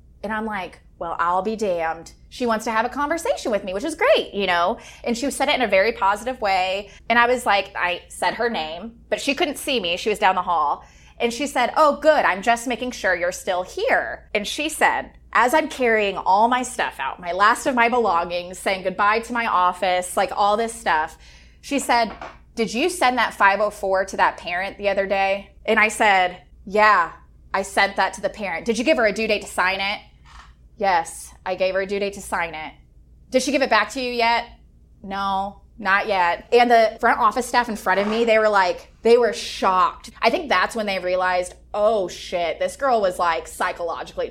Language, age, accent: English, 20-39, American